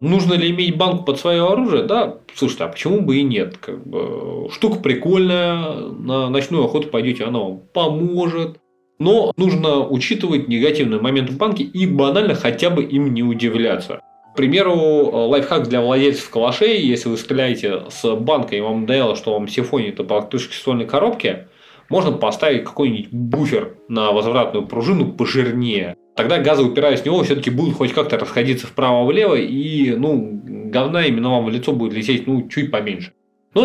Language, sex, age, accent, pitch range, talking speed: Russian, male, 20-39, native, 115-170 Hz, 165 wpm